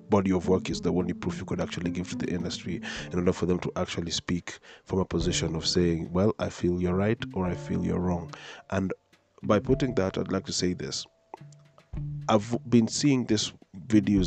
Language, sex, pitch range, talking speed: English, male, 85-105 Hz, 210 wpm